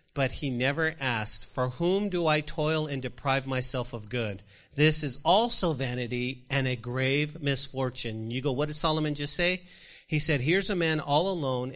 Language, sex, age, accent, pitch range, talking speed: English, male, 40-59, American, 115-145 Hz, 185 wpm